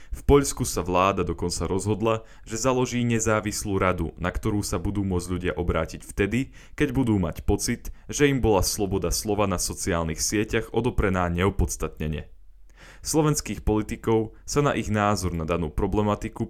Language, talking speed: Slovak, 150 wpm